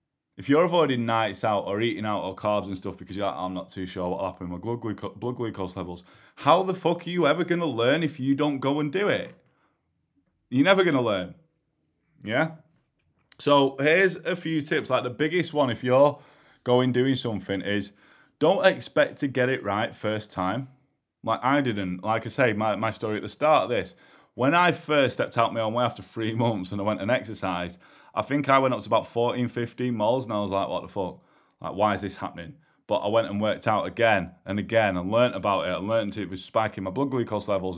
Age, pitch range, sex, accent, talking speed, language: 20-39, 105-135 Hz, male, British, 230 wpm, English